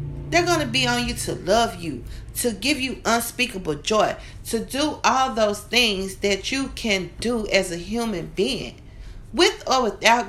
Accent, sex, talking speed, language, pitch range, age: American, female, 175 wpm, English, 140-195 Hz, 40-59